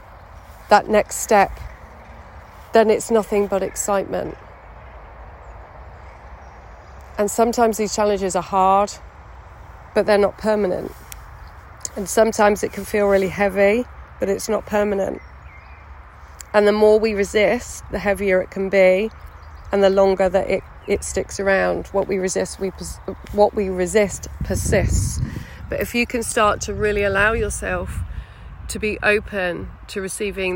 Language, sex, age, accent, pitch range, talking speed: English, female, 30-49, British, 165-205 Hz, 135 wpm